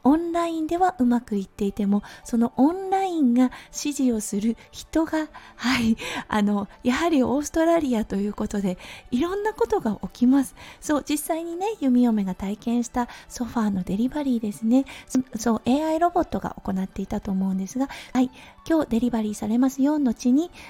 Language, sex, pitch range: Japanese, female, 200-285 Hz